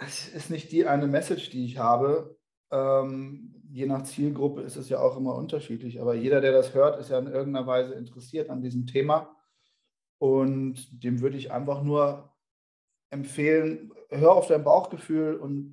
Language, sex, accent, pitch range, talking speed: German, male, German, 120-150 Hz, 170 wpm